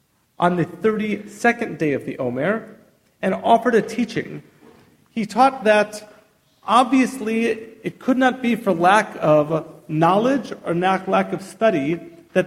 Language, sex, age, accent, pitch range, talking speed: English, male, 40-59, American, 170-215 Hz, 135 wpm